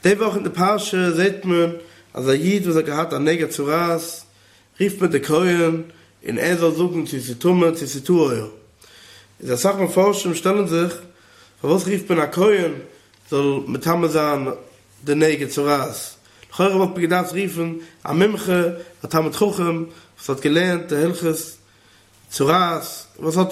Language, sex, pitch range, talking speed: English, male, 145-180 Hz, 75 wpm